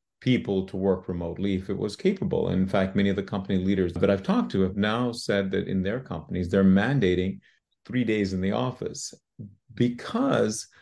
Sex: male